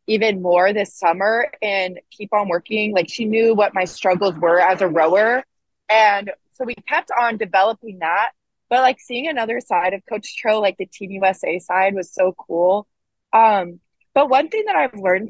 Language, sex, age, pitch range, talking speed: English, female, 20-39, 185-220 Hz, 190 wpm